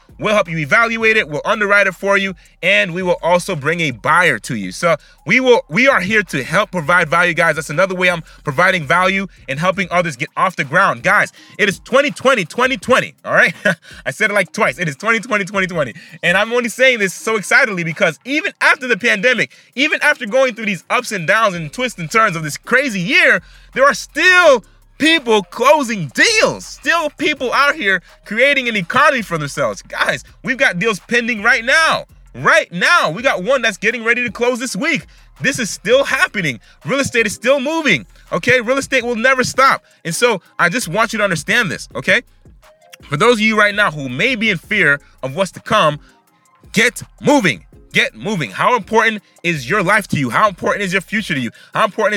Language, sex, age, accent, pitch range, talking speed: English, male, 30-49, American, 180-250 Hz, 210 wpm